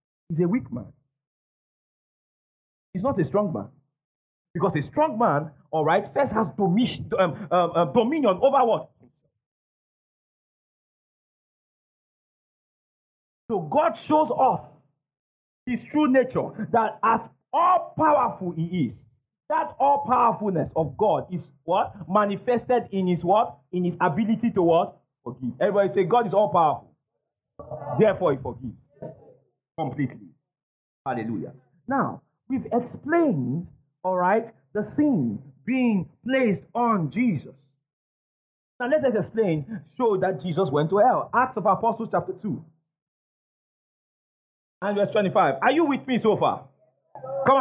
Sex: male